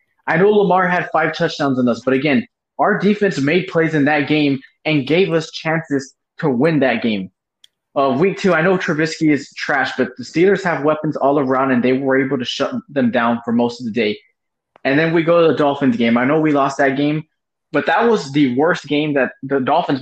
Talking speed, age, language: 230 wpm, 20-39, English